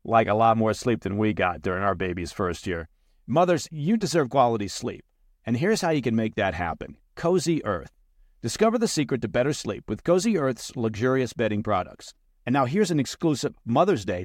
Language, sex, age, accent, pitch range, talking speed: English, male, 50-69, American, 105-160 Hz, 200 wpm